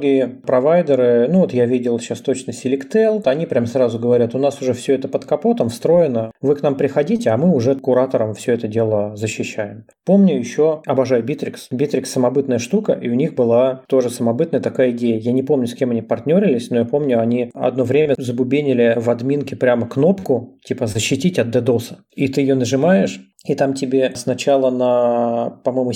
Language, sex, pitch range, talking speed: Russian, male, 120-140 Hz, 185 wpm